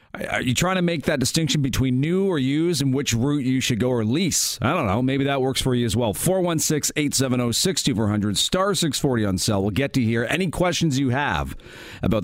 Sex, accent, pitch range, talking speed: male, American, 100-135 Hz, 215 wpm